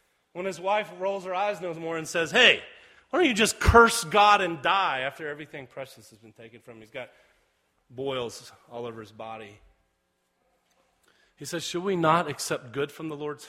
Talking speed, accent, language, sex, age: 195 wpm, American, English, male, 30-49